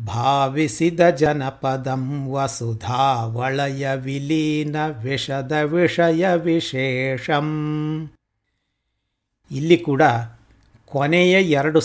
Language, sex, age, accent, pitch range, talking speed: Kannada, male, 60-79, native, 130-170 Hz, 60 wpm